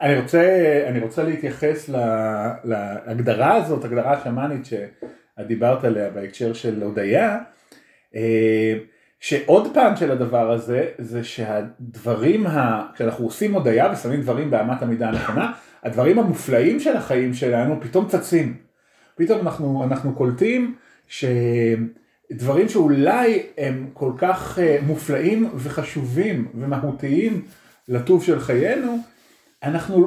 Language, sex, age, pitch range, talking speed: Hebrew, male, 30-49, 120-160 Hz, 110 wpm